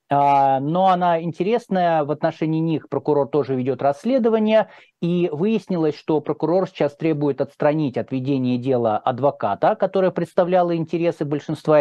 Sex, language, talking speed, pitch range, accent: male, Russian, 125 wpm, 135-175 Hz, native